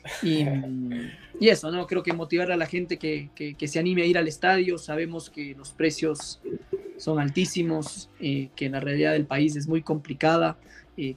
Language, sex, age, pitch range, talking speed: Spanish, male, 20-39, 140-165 Hz, 190 wpm